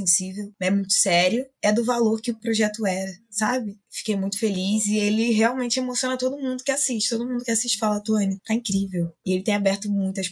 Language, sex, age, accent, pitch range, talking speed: Portuguese, female, 20-39, Brazilian, 165-210 Hz, 210 wpm